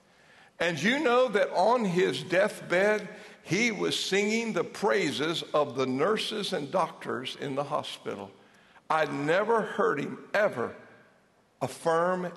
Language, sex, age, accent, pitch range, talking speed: English, male, 60-79, American, 125-175 Hz, 125 wpm